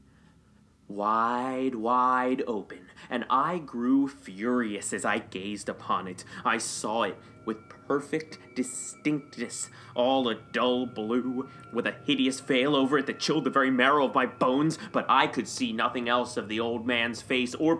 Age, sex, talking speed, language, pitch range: 20-39, male, 160 wpm, English, 115-140 Hz